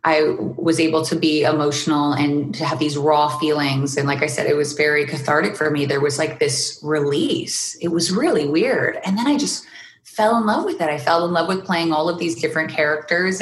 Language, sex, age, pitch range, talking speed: English, female, 20-39, 155-190 Hz, 230 wpm